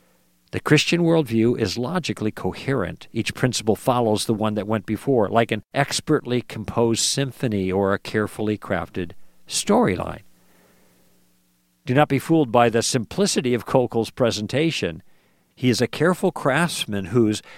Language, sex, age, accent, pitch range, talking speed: English, male, 50-69, American, 100-135 Hz, 135 wpm